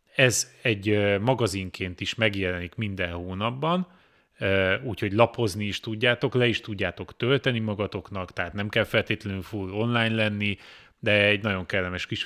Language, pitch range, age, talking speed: Hungarian, 100-125 Hz, 30-49, 135 wpm